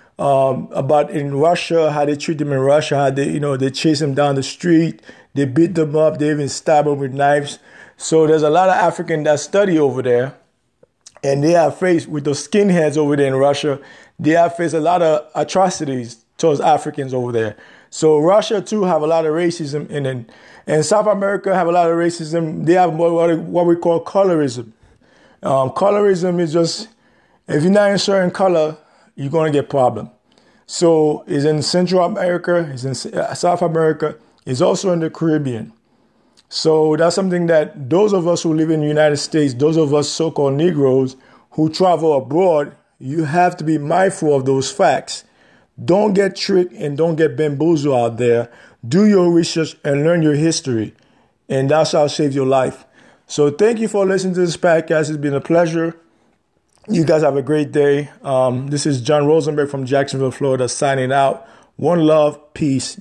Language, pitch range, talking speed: English, 140-170 Hz, 190 wpm